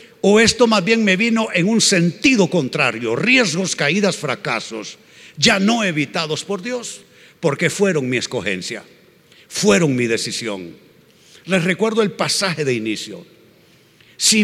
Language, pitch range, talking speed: Spanish, 150-205 Hz, 135 wpm